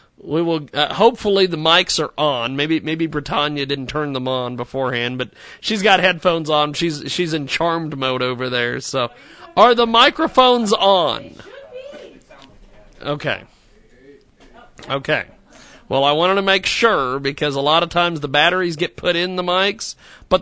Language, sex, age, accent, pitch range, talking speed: English, male, 40-59, American, 140-200 Hz, 160 wpm